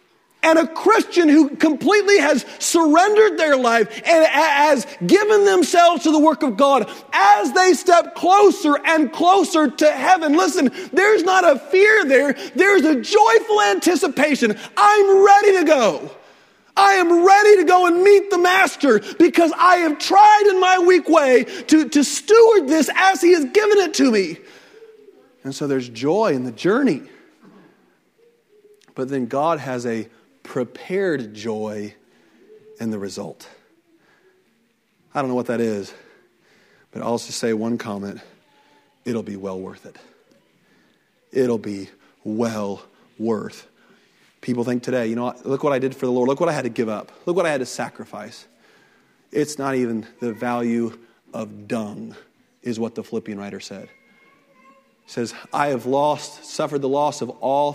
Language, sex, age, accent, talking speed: English, male, 40-59, American, 160 wpm